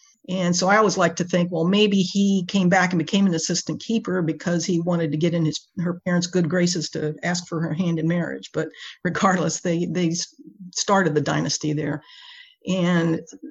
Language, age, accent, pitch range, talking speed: English, 50-69, American, 165-195 Hz, 195 wpm